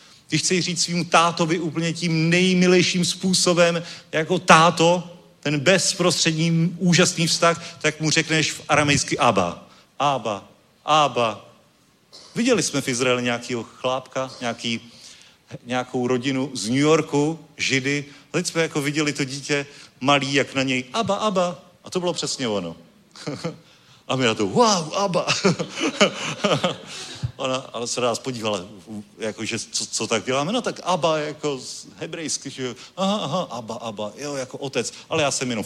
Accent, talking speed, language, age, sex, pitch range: native, 140 wpm, Czech, 40-59, male, 130-175 Hz